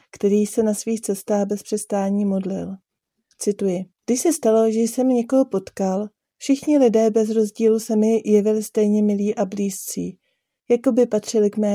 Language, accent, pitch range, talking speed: Czech, native, 205-235 Hz, 165 wpm